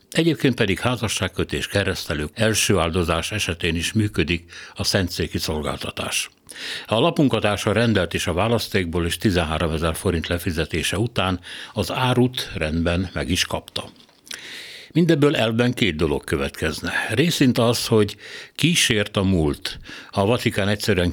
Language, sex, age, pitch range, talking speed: Hungarian, male, 60-79, 85-110 Hz, 130 wpm